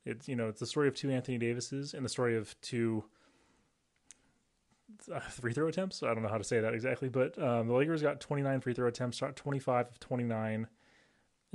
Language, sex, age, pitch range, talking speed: English, male, 20-39, 115-135 Hz, 210 wpm